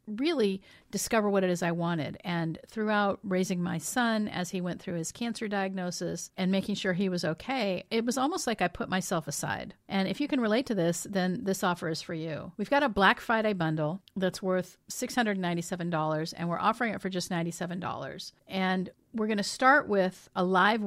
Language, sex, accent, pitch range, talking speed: English, female, American, 170-210 Hz, 200 wpm